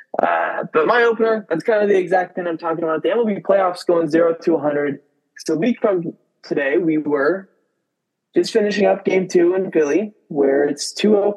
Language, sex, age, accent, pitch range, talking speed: English, male, 20-39, American, 150-190 Hz, 190 wpm